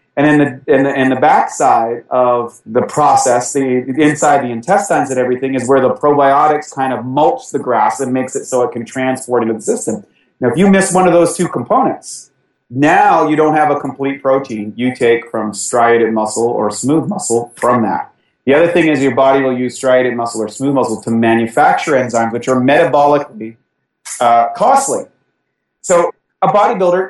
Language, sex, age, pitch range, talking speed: English, male, 30-49, 125-165 Hz, 190 wpm